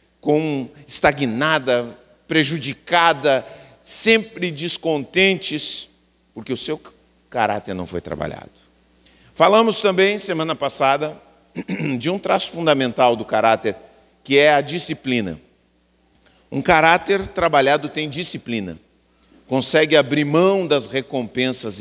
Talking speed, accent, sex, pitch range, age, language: 100 wpm, Brazilian, male, 110-175 Hz, 40-59, Portuguese